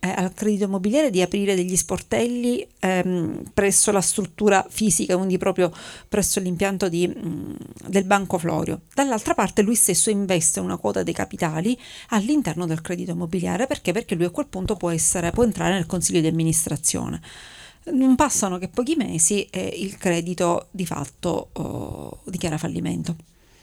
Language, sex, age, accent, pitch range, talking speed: Italian, female, 40-59, native, 170-210 Hz, 155 wpm